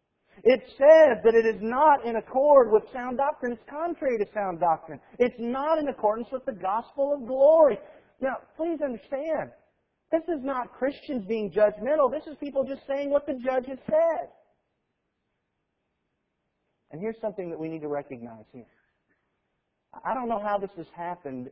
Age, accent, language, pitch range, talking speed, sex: 40-59, American, English, 185-270 Hz, 165 wpm, male